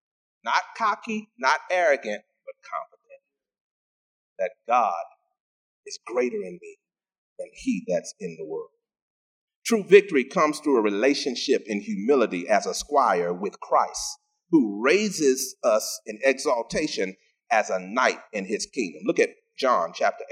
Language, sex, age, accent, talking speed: English, male, 30-49, American, 135 wpm